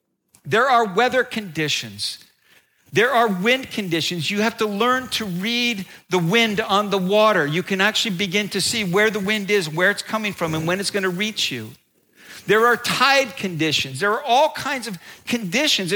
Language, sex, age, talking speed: English, male, 50-69, 190 wpm